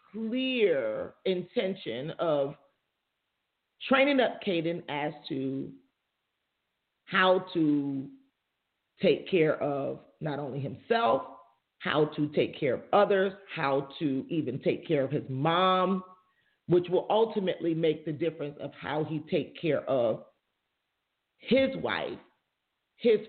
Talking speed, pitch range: 115 wpm, 165-235 Hz